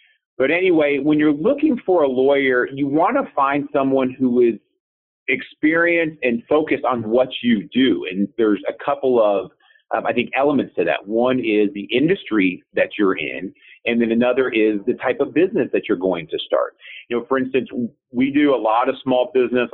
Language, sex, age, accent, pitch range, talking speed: English, male, 40-59, American, 115-145 Hz, 195 wpm